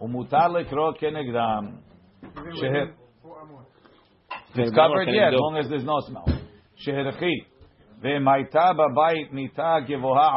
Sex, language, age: male, English, 50-69